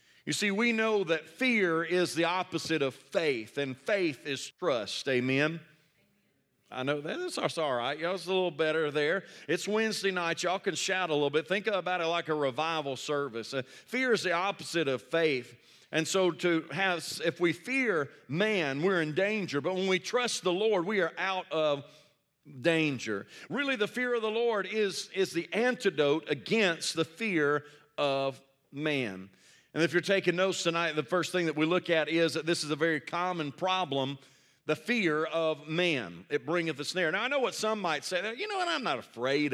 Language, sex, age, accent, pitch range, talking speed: English, male, 40-59, American, 145-185 Hz, 195 wpm